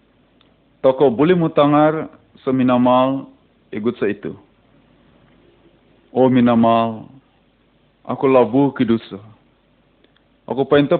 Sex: male